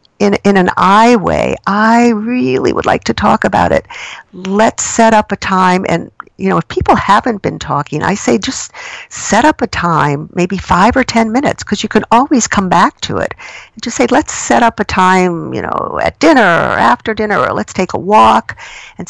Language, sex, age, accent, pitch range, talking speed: English, female, 50-69, American, 165-225 Hz, 205 wpm